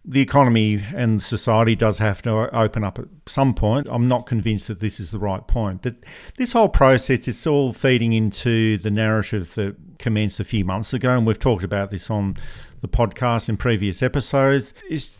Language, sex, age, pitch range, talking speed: English, male, 50-69, 105-125 Hz, 195 wpm